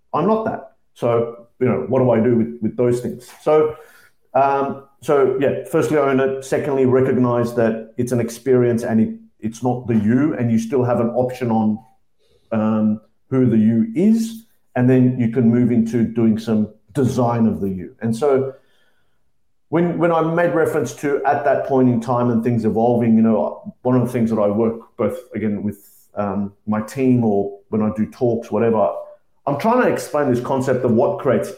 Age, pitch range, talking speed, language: 50-69, 115-135 Hz, 200 wpm, English